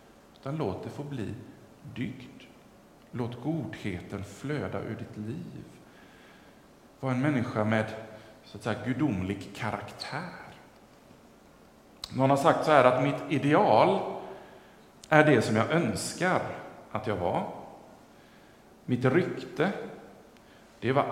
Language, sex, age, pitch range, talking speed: English, male, 50-69, 100-135 Hz, 110 wpm